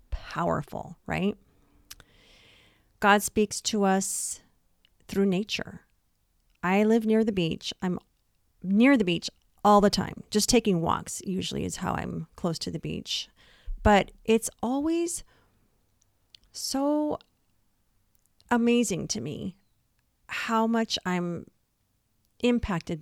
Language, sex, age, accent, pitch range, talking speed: English, female, 40-59, American, 155-205 Hz, 110 wpm